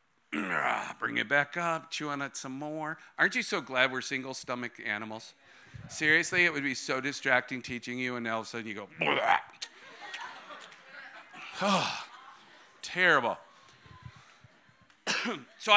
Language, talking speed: English, 135 wpm